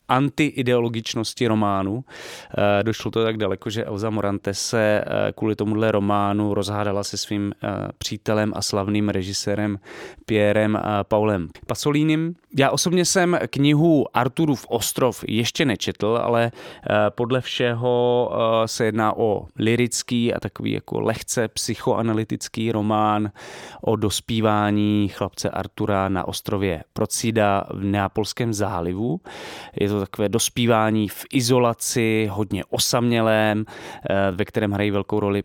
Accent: native